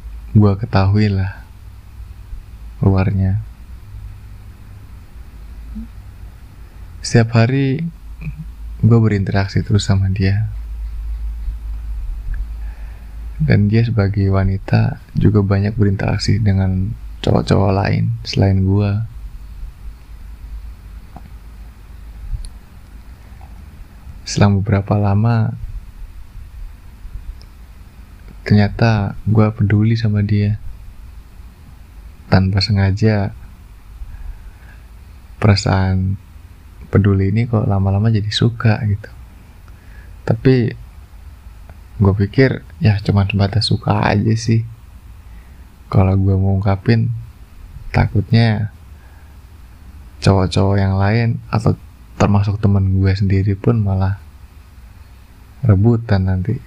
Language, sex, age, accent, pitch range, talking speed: Indonesian, male, 20-39, native, 85-105 Hz, 70 wpm